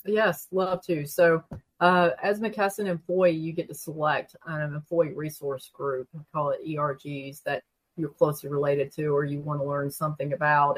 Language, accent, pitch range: English, American, 150-175 Hz